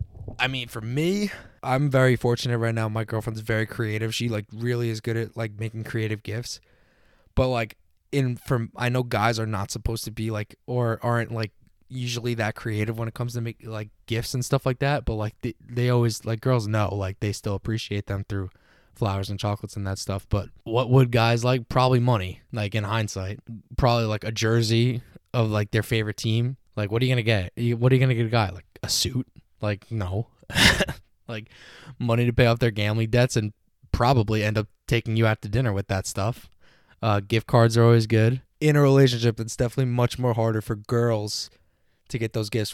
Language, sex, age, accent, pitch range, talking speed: English, male, 20-39, American, 105-125 Hz, 215 wpm